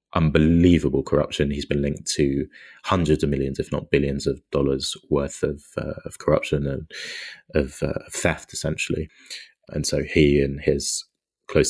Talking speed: 160 wpm